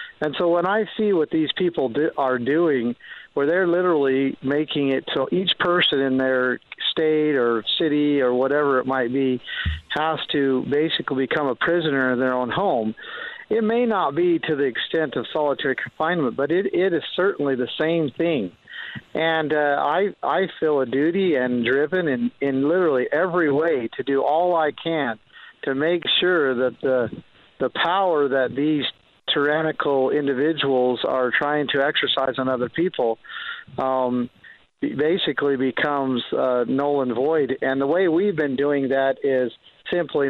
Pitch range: 130-160 Hz